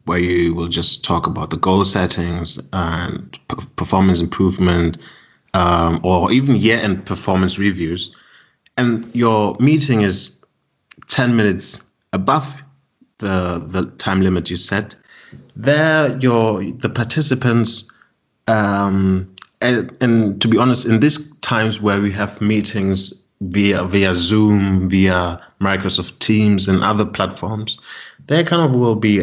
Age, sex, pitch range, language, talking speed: 30-49, male, 95-135 Hz, English, 130 wpm